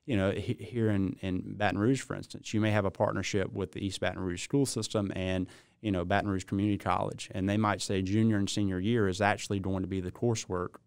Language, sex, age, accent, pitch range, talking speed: English, male, 30-49, American, 95-110 Hz, 235 wpm